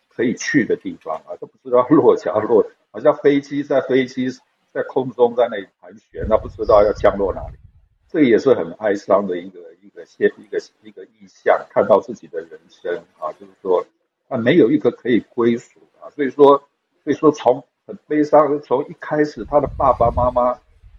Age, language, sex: 60-79, Chinese, male